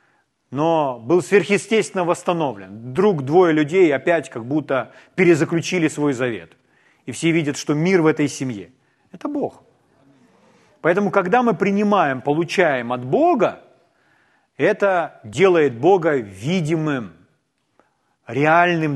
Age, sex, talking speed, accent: 40-59, male, 110 wpm, native